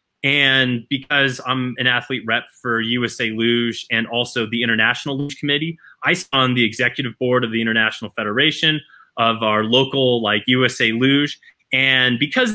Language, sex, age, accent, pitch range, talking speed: English, male, 20-39, American, 120-160 Hz, 155 wpm